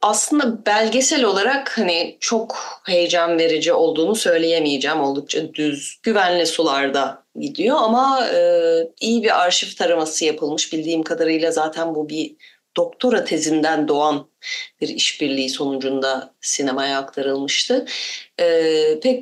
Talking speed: 110 wpm